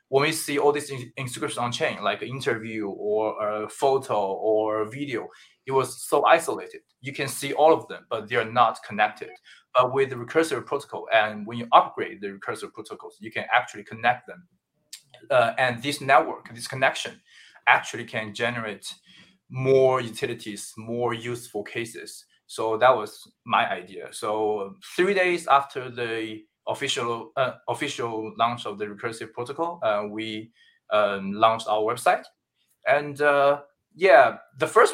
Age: 20-39